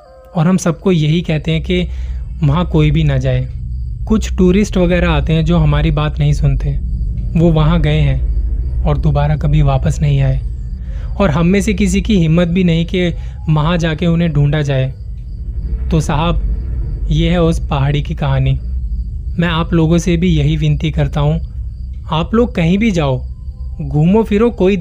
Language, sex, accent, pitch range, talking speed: Hindi, male, native, 130-170 Hz, 175 wpm